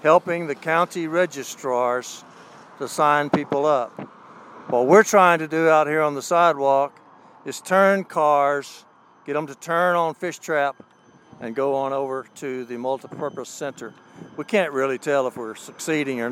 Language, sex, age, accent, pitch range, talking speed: English, male, 60-79, American, 135-170 Hz, 160 wpm